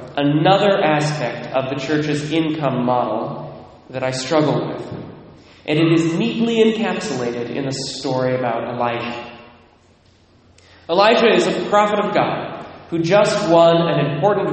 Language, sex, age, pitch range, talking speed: English, male, 20-39, 130-170 Hz, 130 wpm